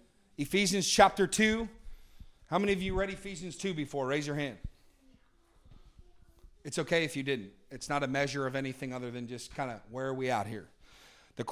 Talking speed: 190 wpm